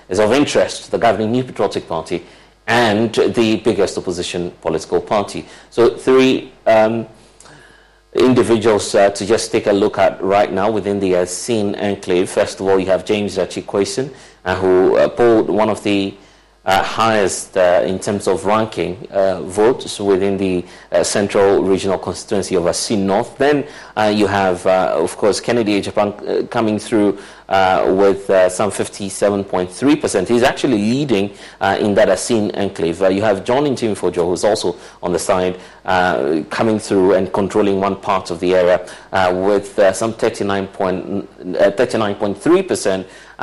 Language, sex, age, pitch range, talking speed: English, male, 30-49, 95-110 Hz, 160 wpm